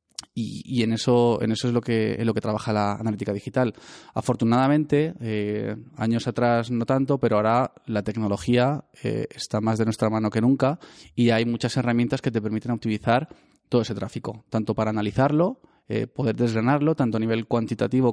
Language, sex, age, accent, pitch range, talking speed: Spanish, male, 20-39, Spanish, 110-130 Hz, 180 wpm